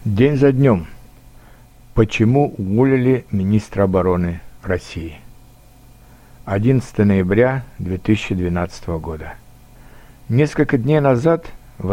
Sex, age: male, 60-79